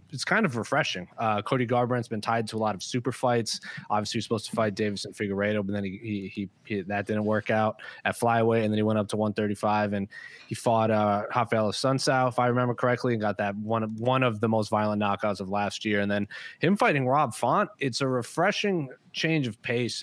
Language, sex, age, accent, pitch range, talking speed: English, male, 20-39, American, 105-125 Hz, 235 wpm